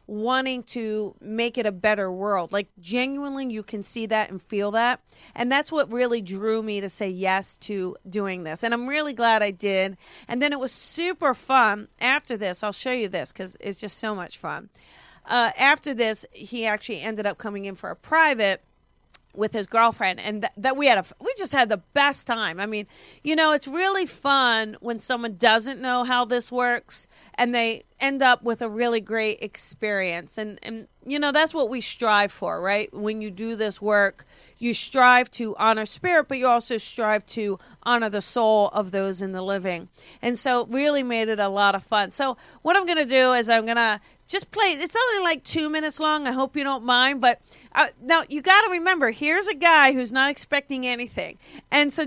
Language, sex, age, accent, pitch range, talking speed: English, female, 40-59, American, 210-280 Hz, 205 wpm